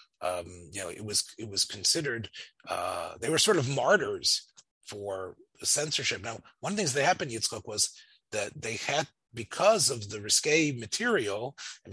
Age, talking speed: 40-59, 170 wpm